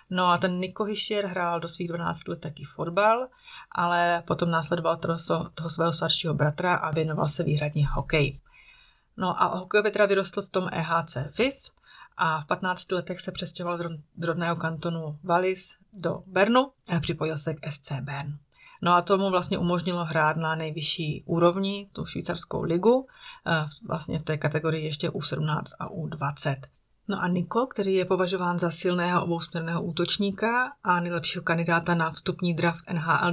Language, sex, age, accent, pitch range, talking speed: Czech, female, 30-49, native, 160-185 Hz, 165 wpm